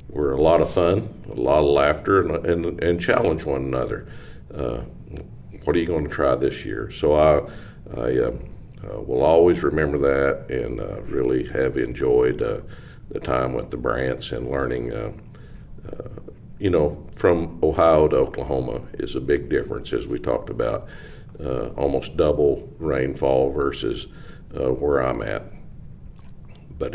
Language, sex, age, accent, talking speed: English, male, 50-69, American, 160 wpm